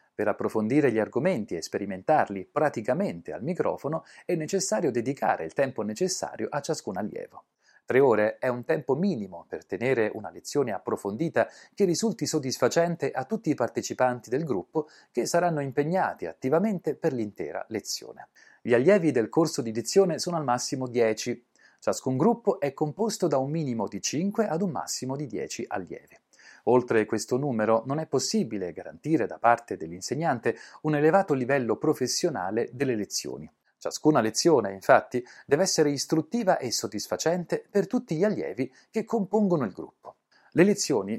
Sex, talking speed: male, 150 wpm